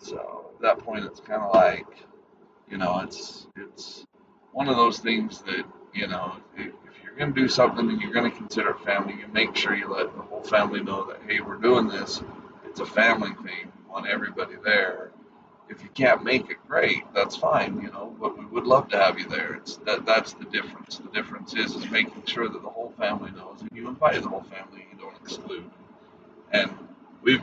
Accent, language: American, English